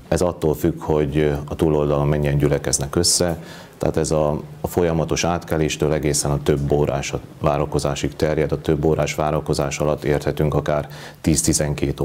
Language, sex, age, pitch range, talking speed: Hungarian, male, 30-49, 70-80 Hz, 140 wpm